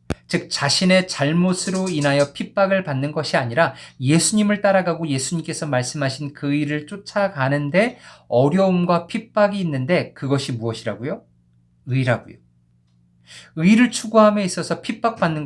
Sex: male